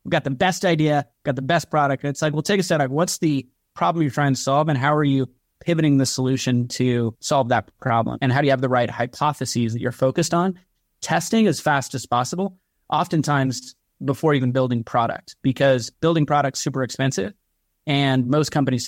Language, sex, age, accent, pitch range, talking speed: English, male, 30-49, American, 130-165 Hz, 210 wpm